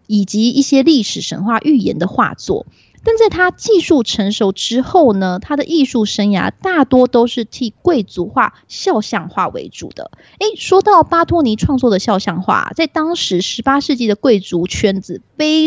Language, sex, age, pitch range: Chinese, female, 20-39, 195-300 Hz